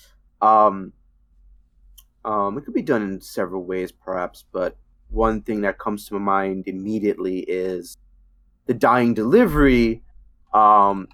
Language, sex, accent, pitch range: English, male, American, 80-115 Hz